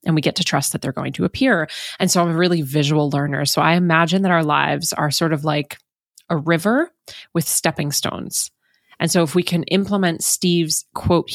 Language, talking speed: English, 210 wpm